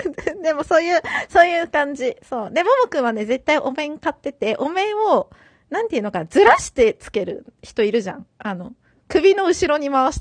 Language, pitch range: Japanese, 240-360 Hz